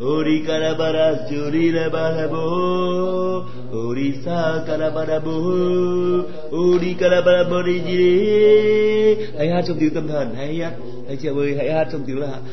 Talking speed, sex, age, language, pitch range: 95 wpm, male, 30-49, Vietnamese, 150-180 Hz